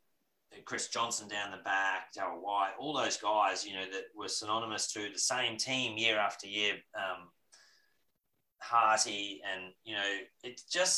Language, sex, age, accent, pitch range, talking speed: English, male, 30-49, Australian, 105-130 Hz, 160 wpm